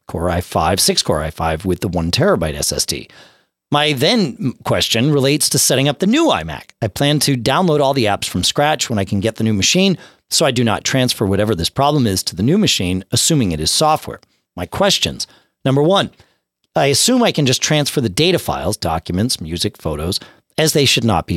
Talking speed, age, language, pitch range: 210 wpm, 40-59, English, 100-160 Hz